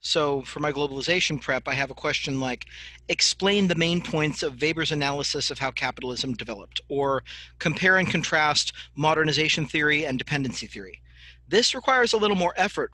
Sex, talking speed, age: male, 165 wpm, 40-59